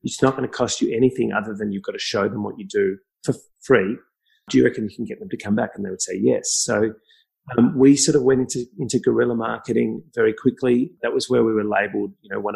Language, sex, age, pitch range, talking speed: English, male, 30-49, 105-140 Hz, 265 wpm